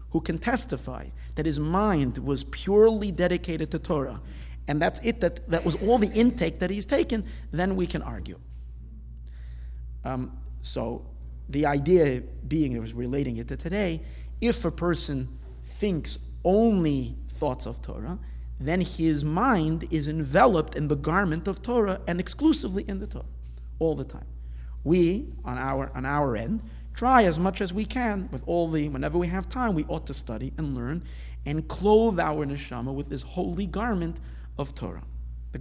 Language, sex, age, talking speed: English, male, 50-69, 165 wpm